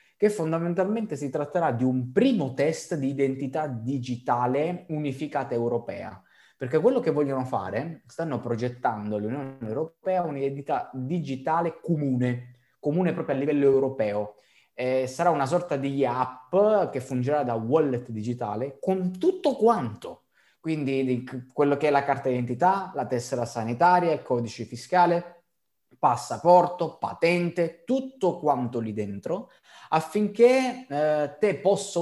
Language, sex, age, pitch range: Italian, male, 20-39, 120-160 Hz